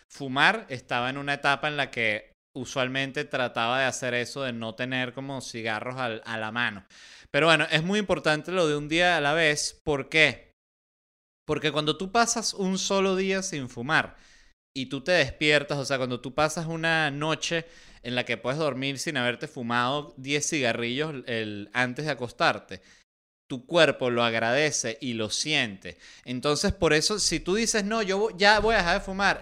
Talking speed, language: 180 wpm, Spanish